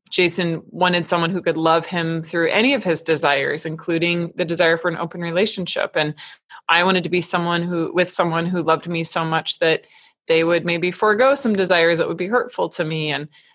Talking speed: 210 wpm